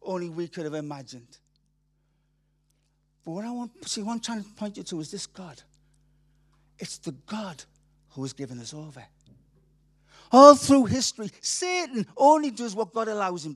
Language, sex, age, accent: English, male, 50-69, British